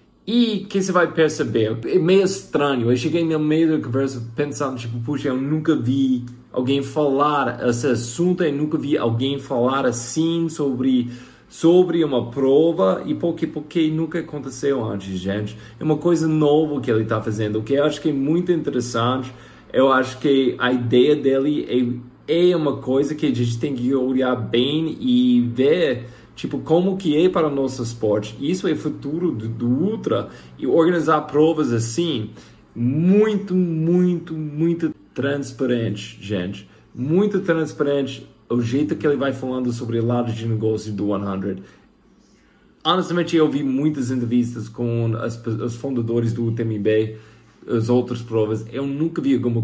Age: 20-39